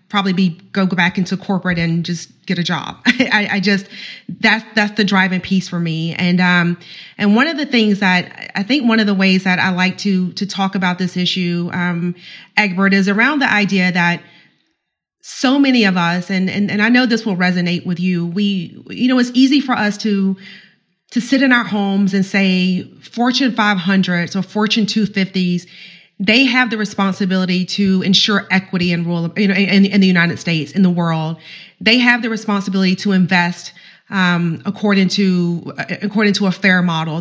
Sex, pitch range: female, 180-210 Hz